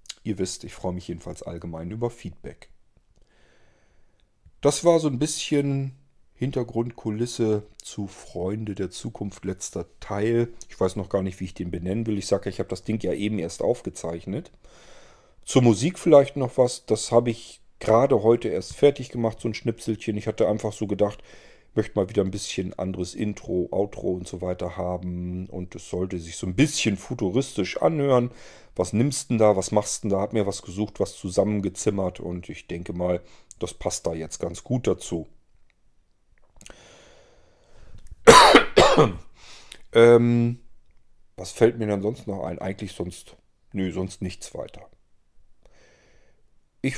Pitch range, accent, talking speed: 95-120 Hz, German, 160 wpm